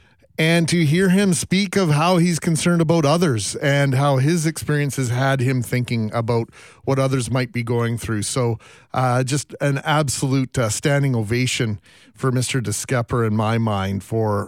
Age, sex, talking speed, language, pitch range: 40-59, male, 165 wpm, English, 125-155 Hz